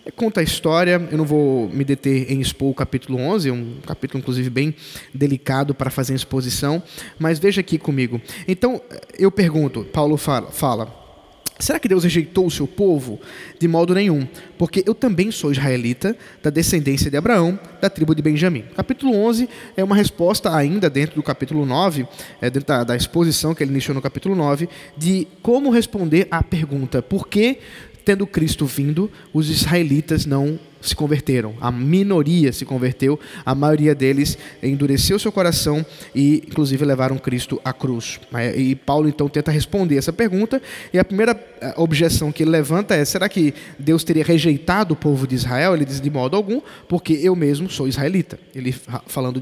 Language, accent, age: Portuguese, Brazilian, 20-39